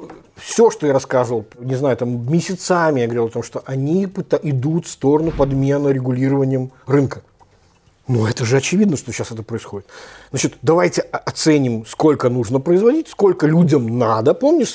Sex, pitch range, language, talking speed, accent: male, 120-155 Hz, Russian, 160 wpm, native